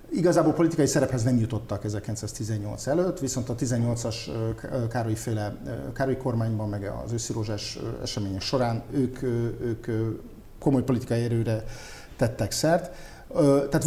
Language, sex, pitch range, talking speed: Hungarian, male, 110-140 Hz, 125 wpm